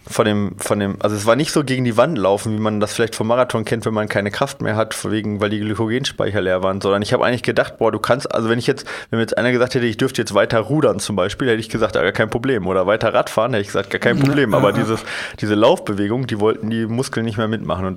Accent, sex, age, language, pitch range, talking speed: German, male, 30-49, German, 105-125 Hz, 280 wpm